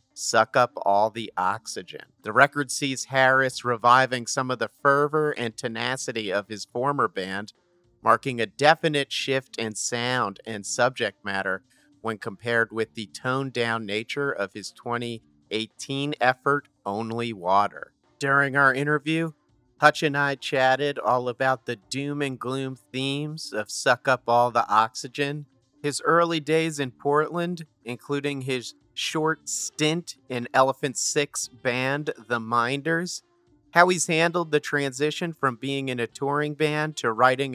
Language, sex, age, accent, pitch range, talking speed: English, male, 40-59, American, 120-145 Hz, 140 wpm